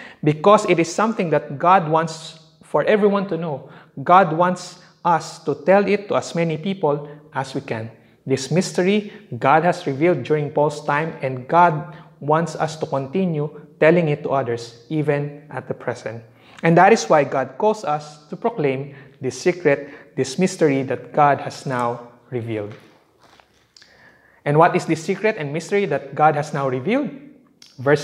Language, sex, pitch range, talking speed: English, male, 140-185 Hz, 165 wpm